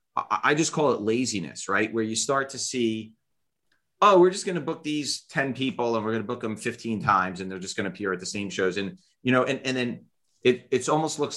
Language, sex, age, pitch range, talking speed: English, male, 30-49, 110-145 Hz, 255 wpm